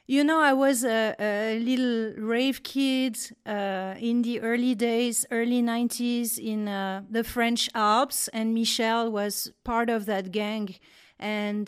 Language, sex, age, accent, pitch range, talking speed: English, female, 40-59, French, 220-255 Hz, 150 wpm